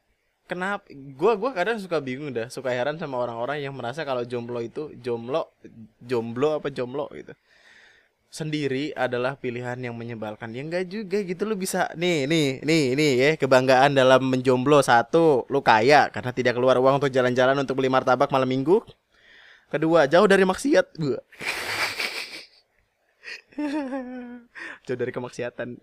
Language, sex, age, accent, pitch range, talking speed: Indonesian, male, 20-39, native, 125-165 Hz, 140 wpm